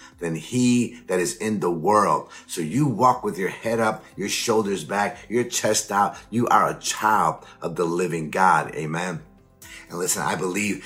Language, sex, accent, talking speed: English, male, American, 180 wpm